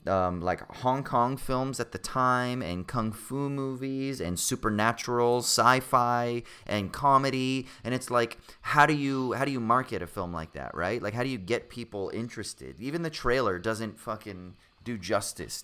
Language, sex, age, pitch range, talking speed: English, male, 30-49, 90-125 Hz, 175 wpm